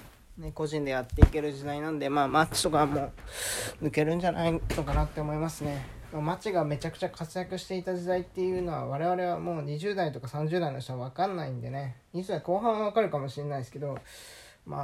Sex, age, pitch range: male, 20-39, 125-165 Hz